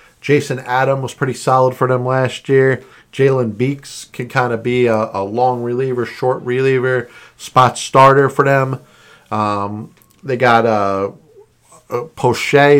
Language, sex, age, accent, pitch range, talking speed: English, male, 50-69, American, 115-140 Hz, 145 wpm